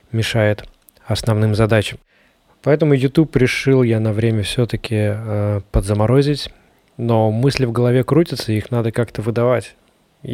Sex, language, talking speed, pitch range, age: male, Russian, 115 wpm, 110-125 Hz, 20-39